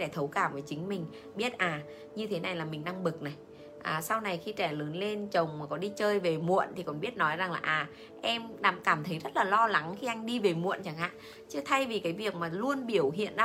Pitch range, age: 150-205 Hz, 20-39